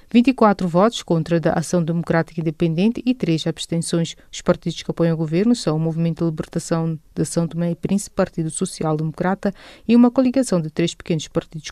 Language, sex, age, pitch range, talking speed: English, female, 30-49, 160-190 Hz, 185 wpm